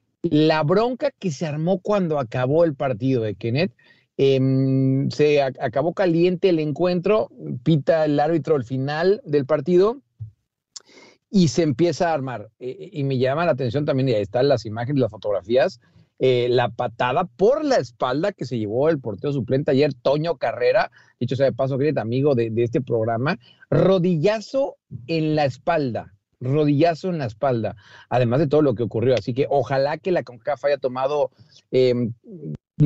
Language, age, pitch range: English, 40-59, 120-165 Hz